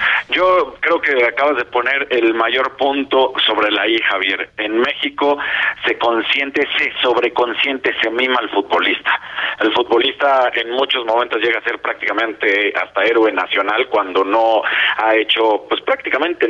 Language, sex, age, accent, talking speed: Spanish, male, 40-59, Mexican, 150 wpm